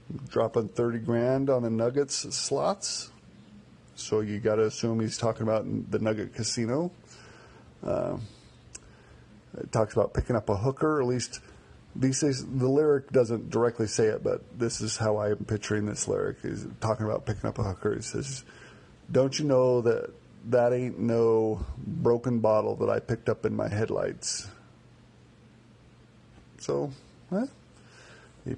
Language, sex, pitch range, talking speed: English, male, 110-130 Hz, 155 wpm